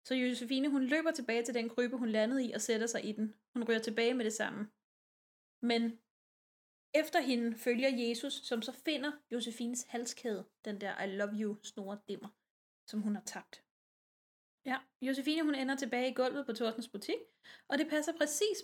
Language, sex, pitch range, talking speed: Danish, female, 220-270 Hz, 180 wpm